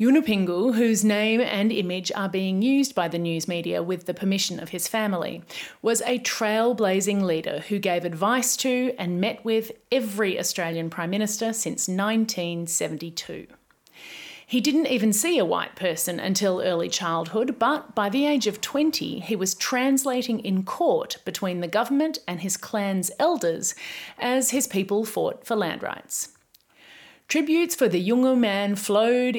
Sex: female